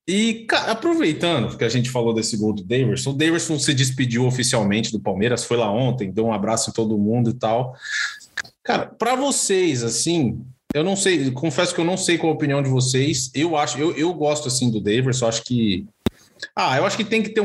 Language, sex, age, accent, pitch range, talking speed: Portuguese, male, 20-39, Brazilian, 120-170 Hz, 215 wpm